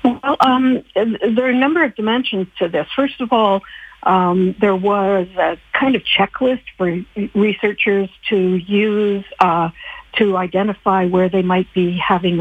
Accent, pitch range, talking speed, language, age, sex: American, 185-220 Hz, 150 wpm, English, 60-79, female